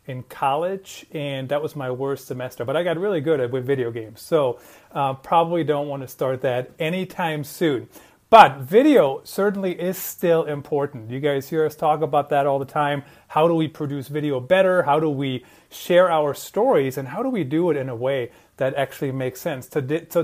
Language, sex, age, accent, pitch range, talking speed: English, male, 30-49, American, 135-165 Hz, 205 wpm